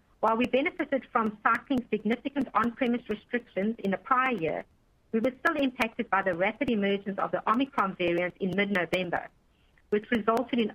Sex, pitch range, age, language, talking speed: female, 195-250 Hz, 50-69, English, 160 wpm